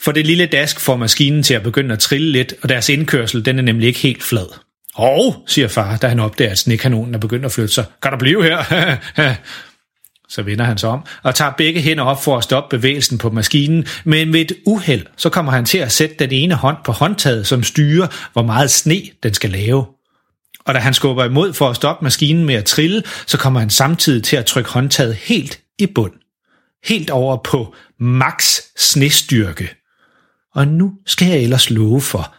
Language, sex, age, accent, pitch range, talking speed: Danish, male, 30-49, native, 115-155 Hz, 210 wpm